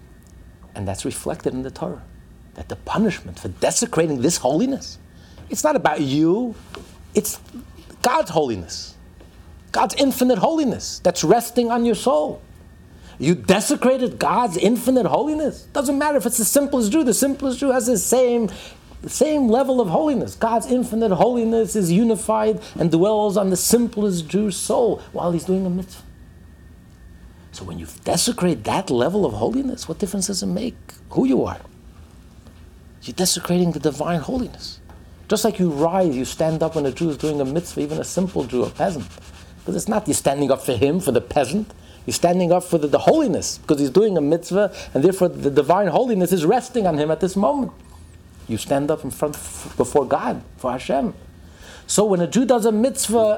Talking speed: 180 wpm